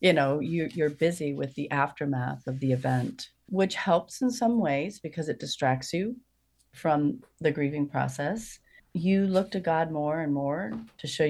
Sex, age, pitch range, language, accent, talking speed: female, 40-59, 145-180 Hz, English, American, 170 wpm